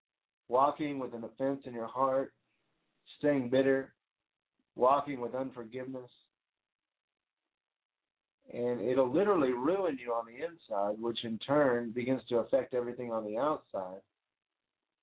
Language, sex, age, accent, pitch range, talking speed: English, male, 50-69, American, 120-140 Hz, 120 wpm